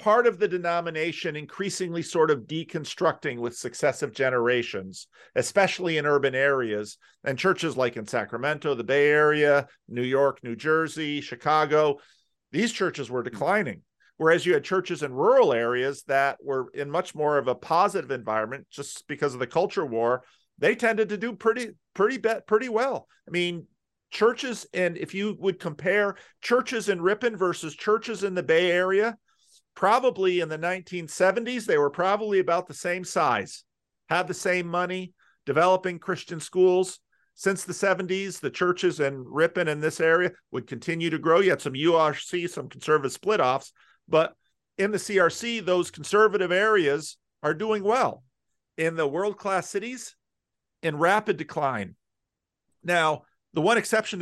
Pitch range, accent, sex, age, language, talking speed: 145-195 Hz, American, male, 50-69, English, 155 wpm